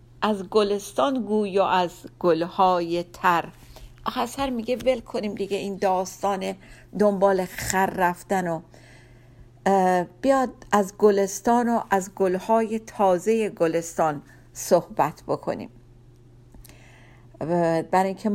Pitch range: 125-210 Hz